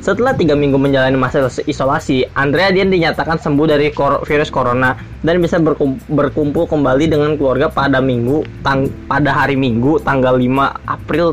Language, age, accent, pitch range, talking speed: Indonesian, 20-39, native, 125-150 Hz, 160 wpm